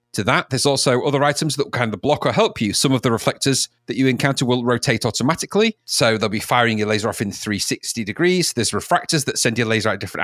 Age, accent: 40-59, British